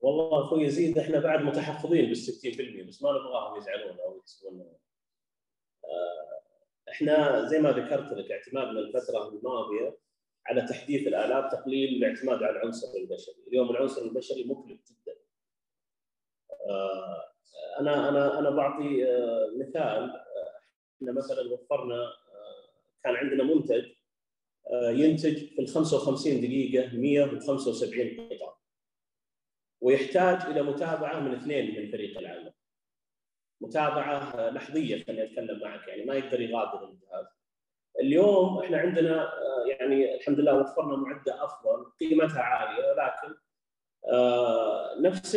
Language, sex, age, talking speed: Arabic, male, 30-49, 115 wpm